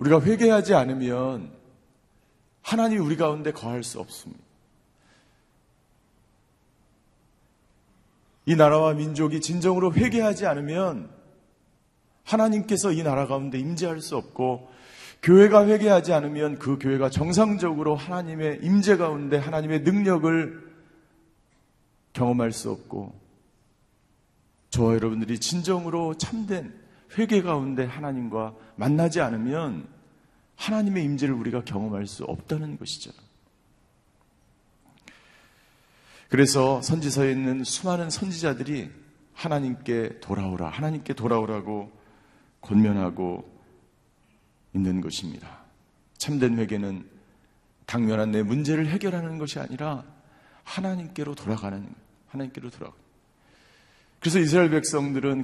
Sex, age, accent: male, 40-59, native